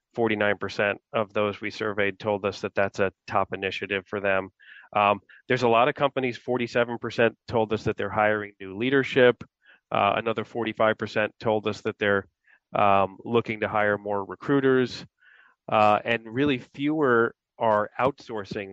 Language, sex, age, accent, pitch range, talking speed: English, male, 30-49, American, 100-115 Hz, 145 wpm